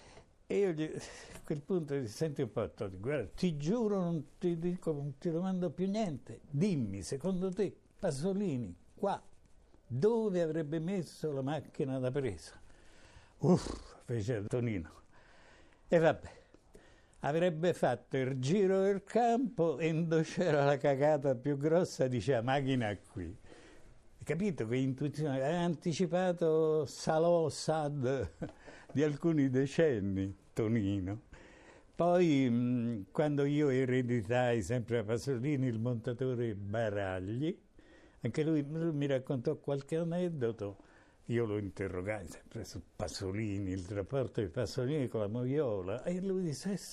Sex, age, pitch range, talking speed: male, 60-79, 120-170 Hz, 125 wpm